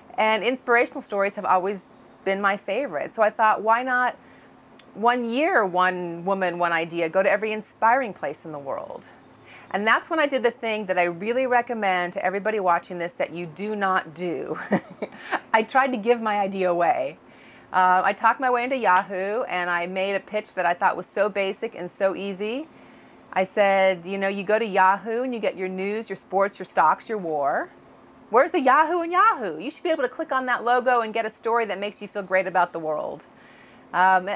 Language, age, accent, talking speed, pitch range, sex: English, 30-49, American, 210 wpm, 185-245 Hz, female